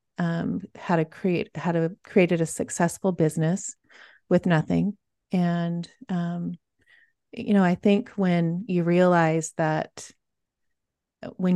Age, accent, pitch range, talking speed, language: 30-49, American, 165-190 Hz, 120 wpm, English